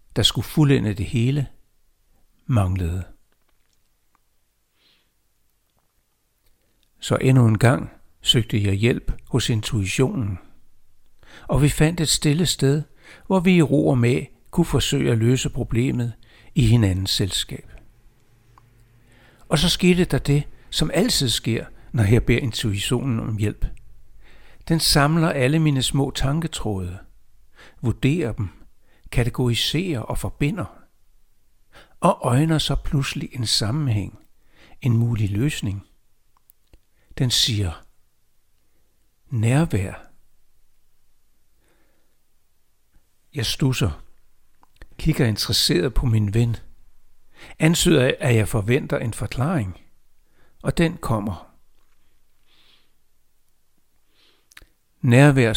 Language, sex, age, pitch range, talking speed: Danish, male, 60-79, 105-135 Hz, 95 wpm